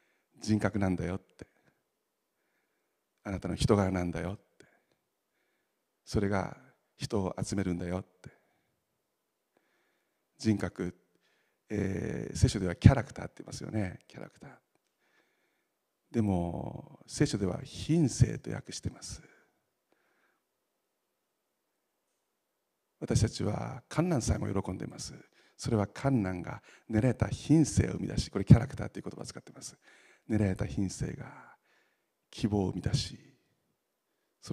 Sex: male